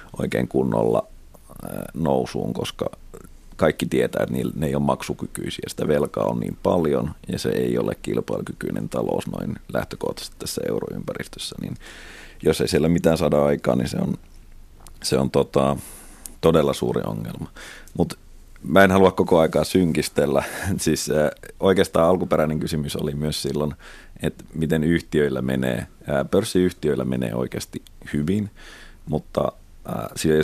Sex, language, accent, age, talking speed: male, Finnish, native, 30-49, 125 wpm